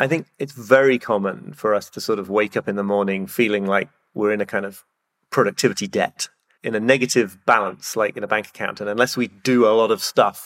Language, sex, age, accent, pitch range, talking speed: English, male, 30-49, British, 105-130 Hz, 235 wpm